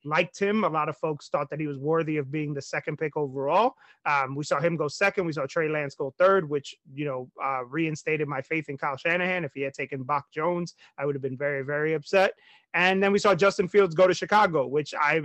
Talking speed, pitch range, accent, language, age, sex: 250 wpm, 150-180 Hz, American, English, 30-49, male